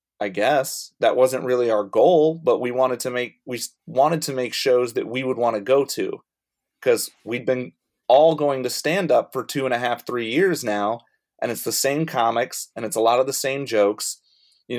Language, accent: English, American